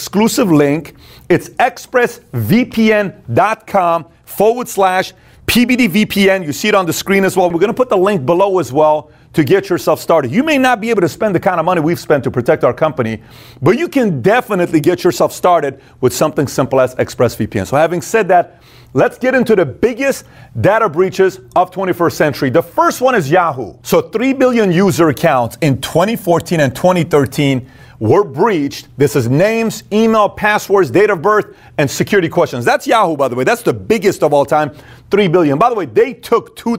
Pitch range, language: 145-205 Hz, English